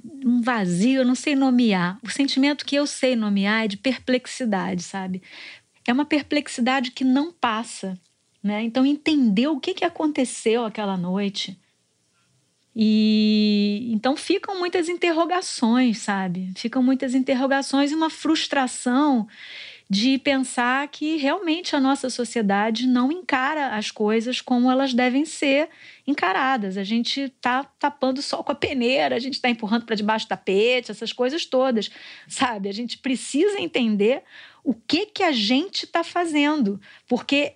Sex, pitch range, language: female, 230-295 Hz, Portuguese